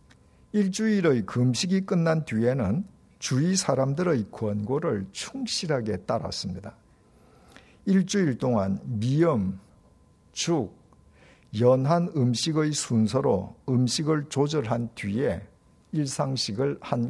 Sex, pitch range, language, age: male, 110-165 Hz, Korean, 50-69